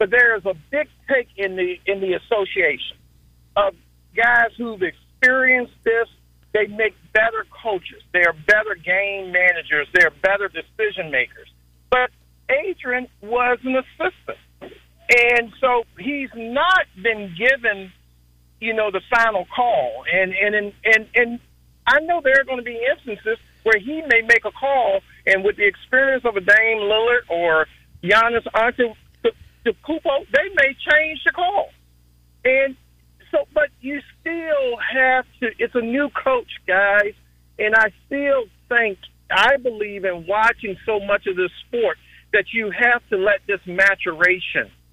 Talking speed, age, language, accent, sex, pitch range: 150 wpm, 50-69, English, American, male, 185-260 Hz